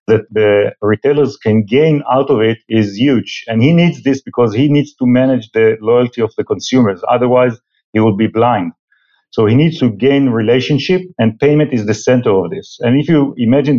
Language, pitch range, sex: English, 115-140 Hz, male